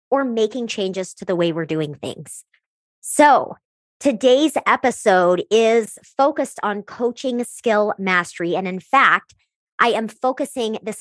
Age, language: 30-49, English